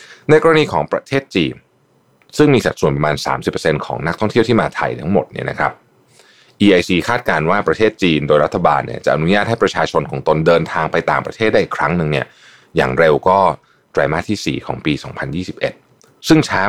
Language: Thai